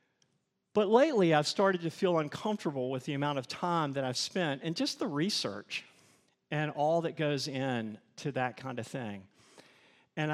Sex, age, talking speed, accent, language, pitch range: male, 50-69, 175 wpm, American, English, 130-160 Hz